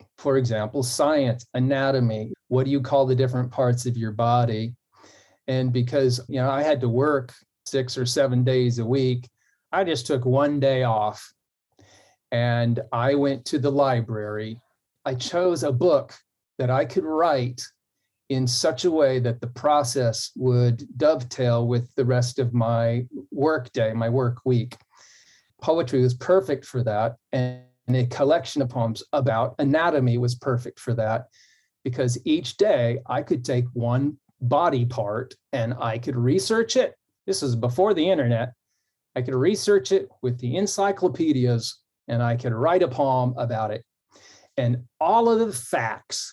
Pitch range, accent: 120-140 Hz, American